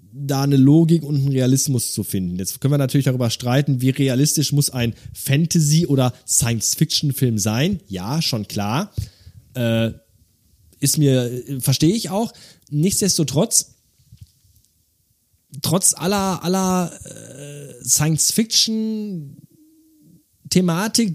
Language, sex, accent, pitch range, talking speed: German, male, German, 120-160 Hz, 105 wpm